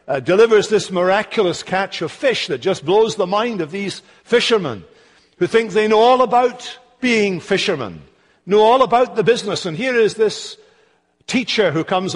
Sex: male